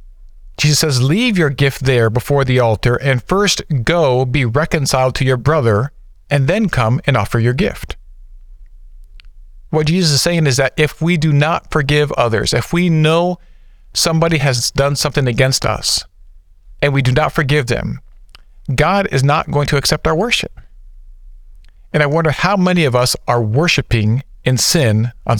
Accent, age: American, 50-69